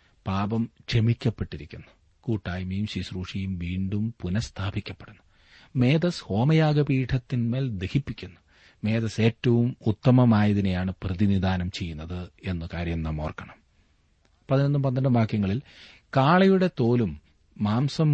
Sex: male